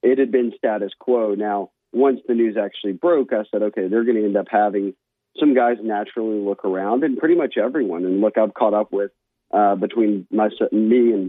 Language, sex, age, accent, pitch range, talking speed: English, male, 40-59, American, 100-115 Hz, 205 wpm